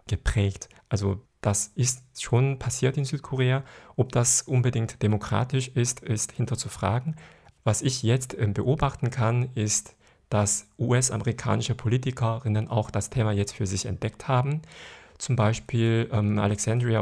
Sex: male